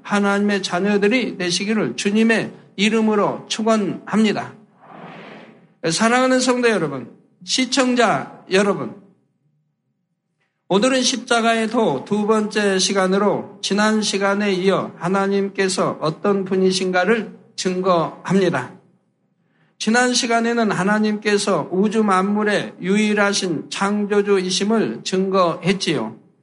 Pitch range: 185-220 Hz